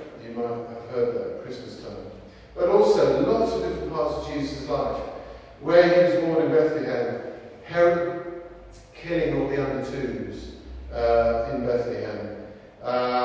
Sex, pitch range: male, 115-165 Hz